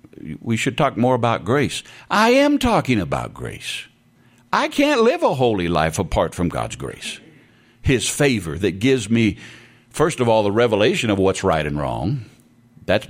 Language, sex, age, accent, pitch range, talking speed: English, male, 60-79, American, 100-150 Hz, 170 wpm